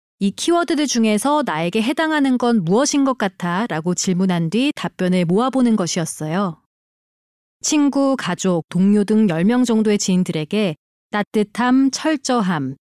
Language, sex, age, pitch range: Korean, female, 30-49, 180-255 Hz